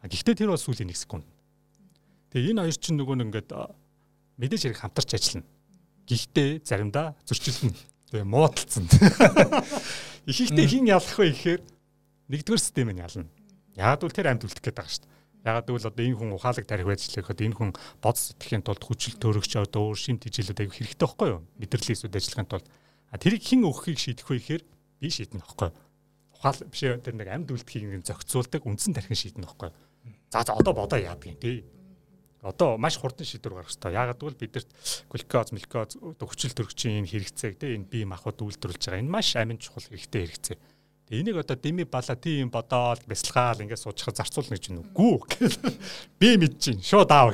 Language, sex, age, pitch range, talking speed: Russian, male, 40-59, 105-150 Hz, 120 wpm